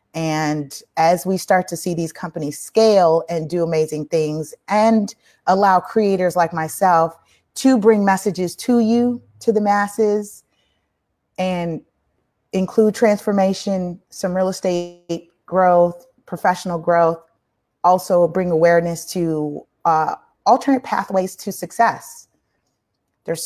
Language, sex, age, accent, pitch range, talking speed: English, female, 30-49, American, 160-215 Hz, 115 wpm